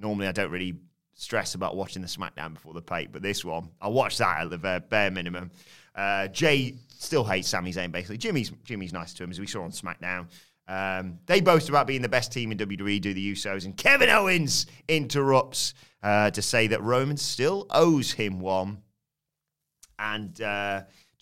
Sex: male